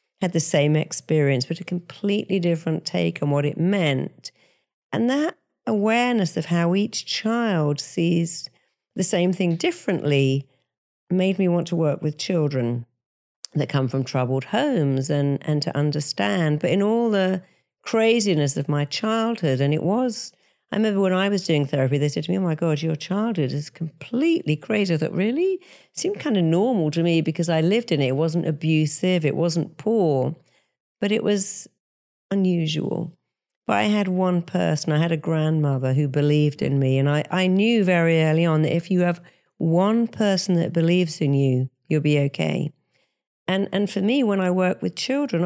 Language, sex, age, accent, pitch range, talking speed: English, female, 50-69, British, 150-195 Hz, 180 wpm